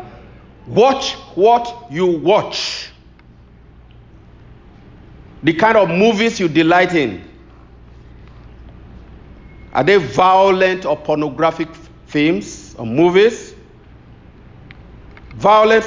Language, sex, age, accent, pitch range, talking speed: English, male, 50-69, Nigerian, 140-180 Hz, 75 wpm